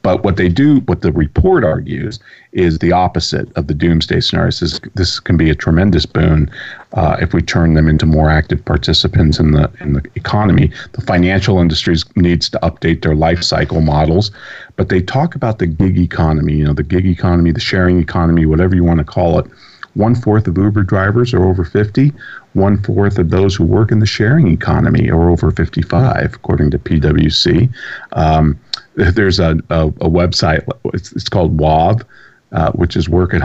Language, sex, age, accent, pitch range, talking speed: English, male, 40-59, American, 80-100 Hz, 185 wpm